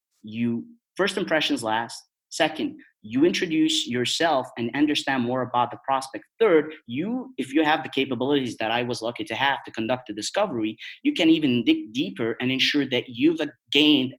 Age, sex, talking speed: 30-49, male, 175 wpm